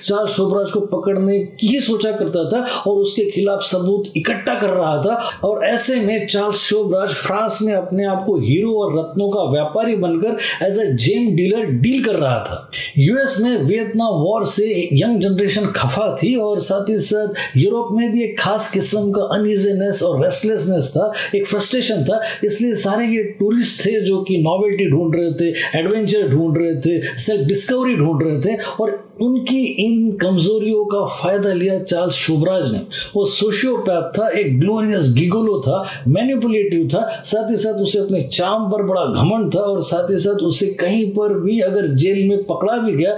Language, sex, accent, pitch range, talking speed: Hindi, male, native, 175-215 Hz, 130 wpm